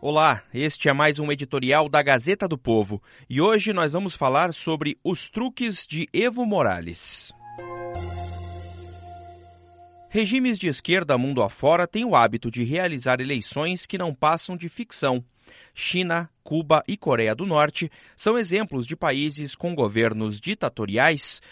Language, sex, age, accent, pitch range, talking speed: Portuguese, male, 30-49, Brazilian, 125-190 Hz, 140 wpm